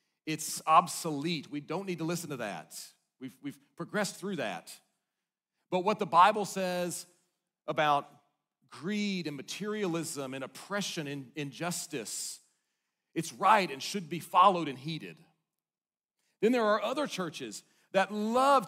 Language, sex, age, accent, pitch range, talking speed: English, male, 40-59, American, 140-195 Hz, 135 wpm